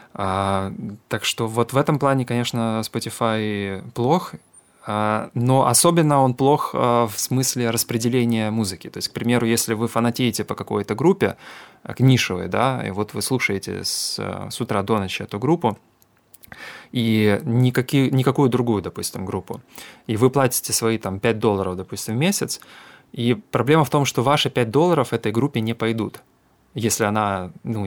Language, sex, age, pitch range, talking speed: Russian, male, 20-39, 105-125 Hz, 160 wpm